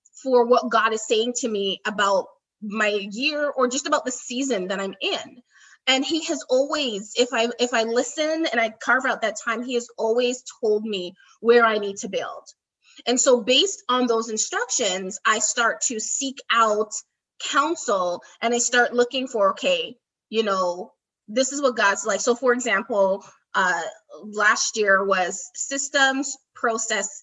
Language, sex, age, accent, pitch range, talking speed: English, female, 20-39, American, 210-255 Hz, 170 wpm